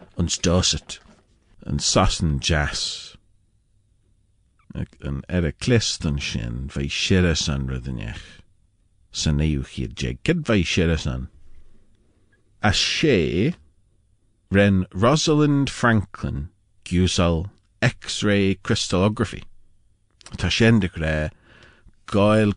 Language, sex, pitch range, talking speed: English, male, 80-100 Hz, 65 wpm